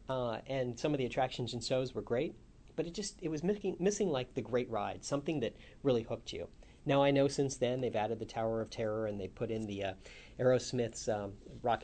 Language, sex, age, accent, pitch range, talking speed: English, male, 40-59, American, 115-150 Hz, 235 wpm